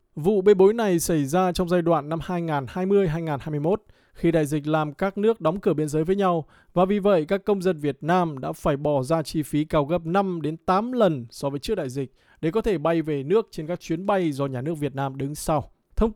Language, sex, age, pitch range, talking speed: Vietnamese, male, 20-39, 150-190 Hz, 240 wpm